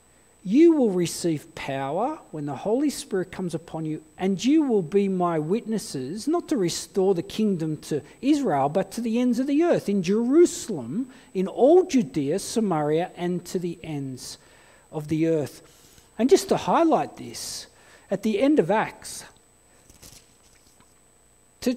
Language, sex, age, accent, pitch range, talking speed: English, male, 40-59, Australian, 160-230 Hz, 150 wpm